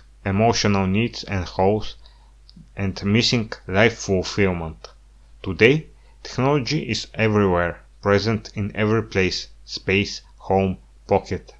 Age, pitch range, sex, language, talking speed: 30-49, 95-115 Hz, male, English, 100 wpm